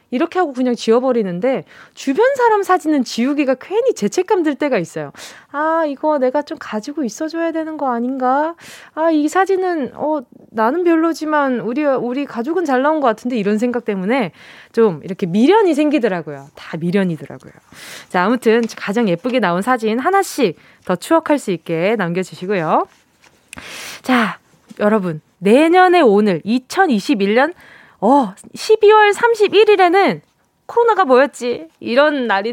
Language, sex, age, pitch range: Korean, female, 20-39, 210-320 Hz